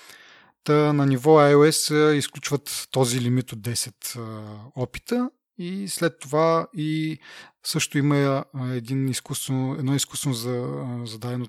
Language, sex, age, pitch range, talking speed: Bulgarian, male, 30-49, 120-150 Hz, 105 wpm